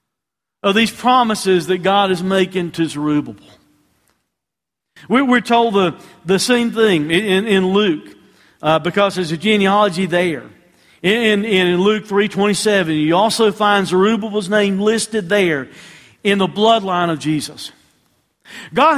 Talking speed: 135 wpm